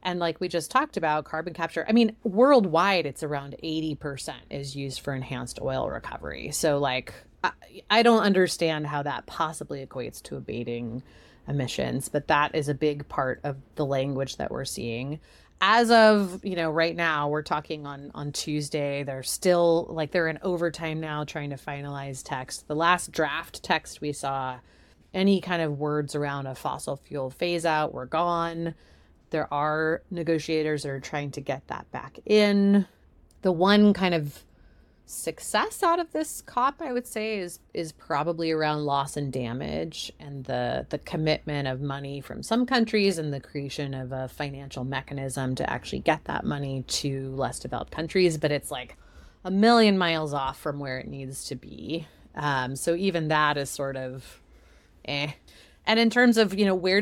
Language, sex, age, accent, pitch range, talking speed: English, female, 30-49, American, 140-180 Hz, 175 wpm